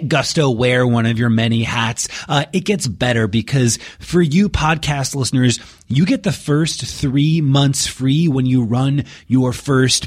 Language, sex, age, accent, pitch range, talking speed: English, male, 30-49, American, 110-140 Hz, 165 wpm